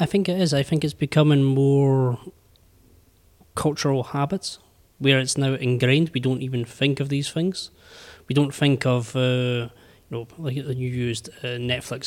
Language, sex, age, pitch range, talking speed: English, male, 20-39, 120-135 Hz, 170 wpm